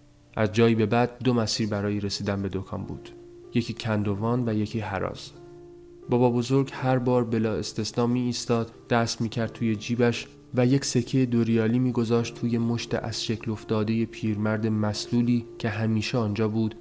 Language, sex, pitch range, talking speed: English, male, 110-120 Hz, 160 wpm